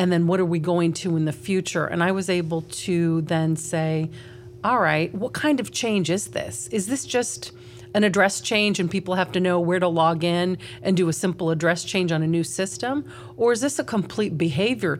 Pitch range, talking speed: 160-195 Hz, 225 wpm